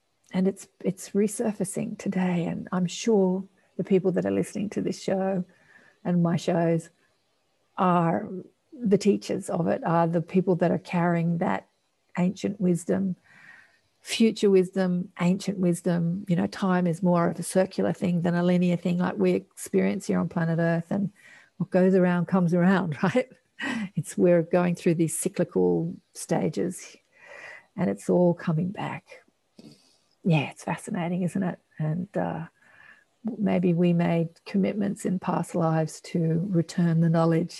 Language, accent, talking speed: English, Australian, 150 wpm